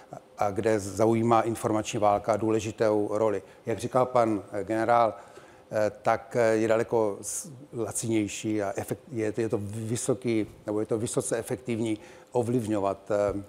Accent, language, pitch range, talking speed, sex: native, Czech, 105-125 Hz, 110 wpm, male